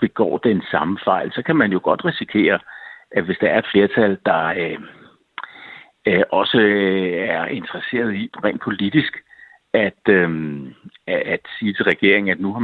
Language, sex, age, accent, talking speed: Danish, male, 60-79, native, 150 wpm